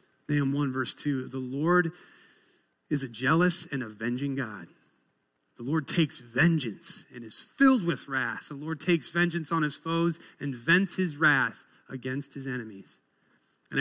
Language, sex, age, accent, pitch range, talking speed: English, male, 30-49, American, 130-160 Hz, 155 wpm